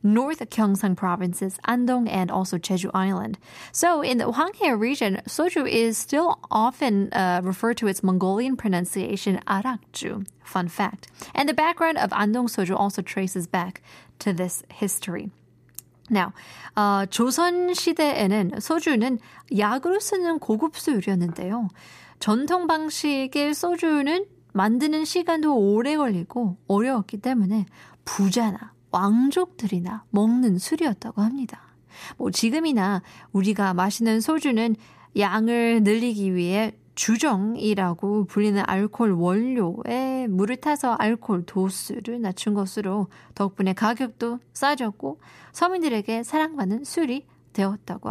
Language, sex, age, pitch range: Korean, female, 20-39, 195-260 Hz